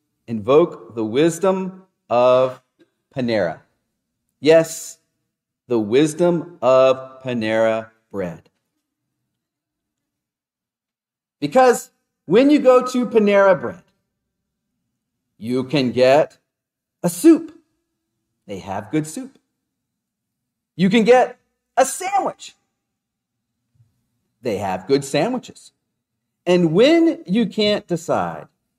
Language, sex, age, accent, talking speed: English, male, 40-59, American, 85 wpm